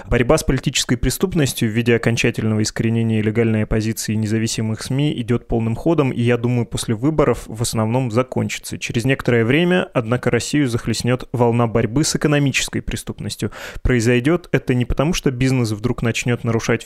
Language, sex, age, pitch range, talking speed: Russian, male, 20-39, 115-135 Hz, 155 wpm